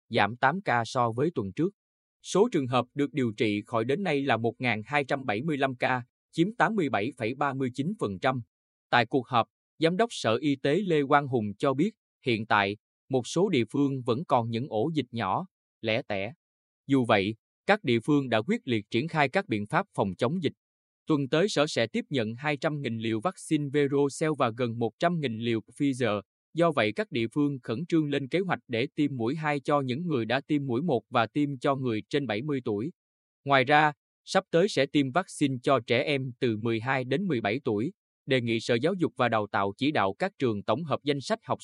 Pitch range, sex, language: 115-150 Hz, male, Vietnamese